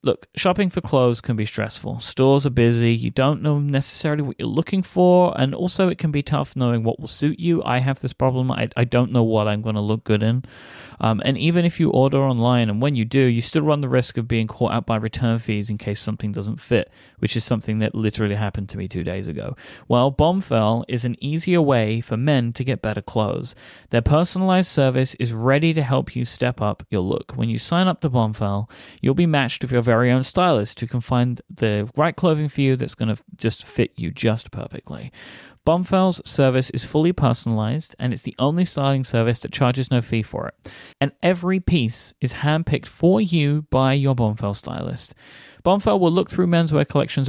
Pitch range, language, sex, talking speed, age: 115-150 Hz, English, male, 220 wpm, 30-49